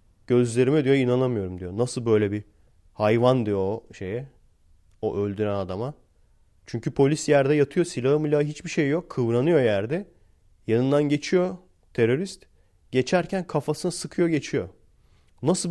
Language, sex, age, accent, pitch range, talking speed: Turkish, male, 40-59, native, 100-150 Hz, 120 wpm